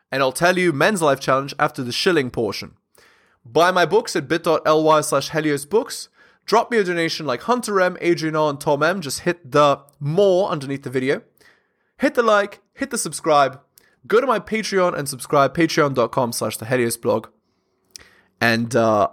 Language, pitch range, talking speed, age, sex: English, 130-185 Hz, 170 wpm, 20-39, male